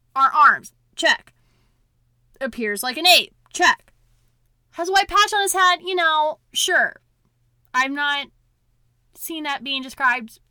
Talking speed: 135 wpm